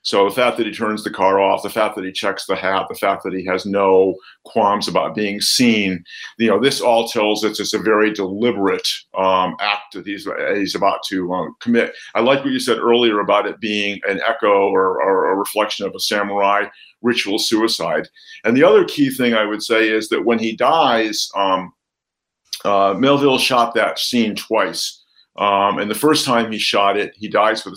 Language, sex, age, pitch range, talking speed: English, male, 50-69, 105-160 Hz, 205 wpm